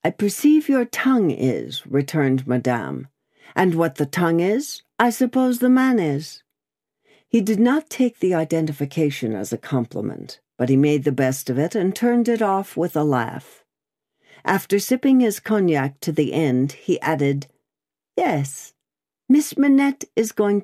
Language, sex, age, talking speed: English, female, 60-79, 155 wpm